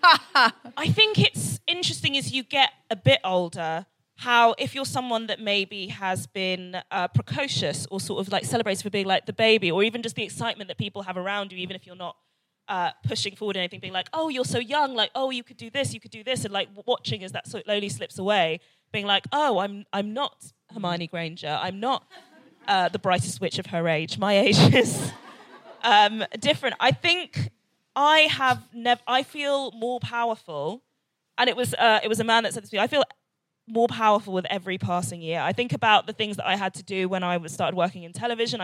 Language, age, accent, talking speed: English, 20-39, British, 215 wpm